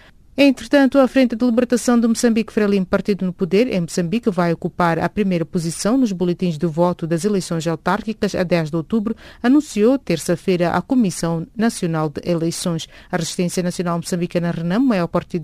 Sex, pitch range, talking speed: female, 170-225 Hz, 165 wpm